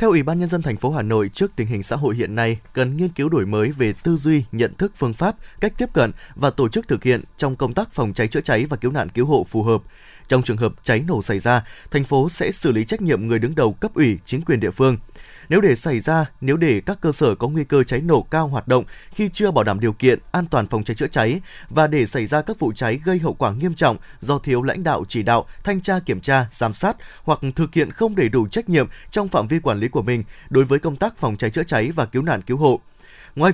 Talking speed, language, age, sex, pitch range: 275 wpm, Vietnamese, 20-39, male, 120-170 Hz